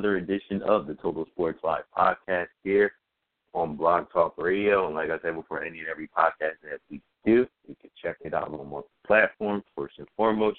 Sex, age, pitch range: male, 30-49, 90-115 Hz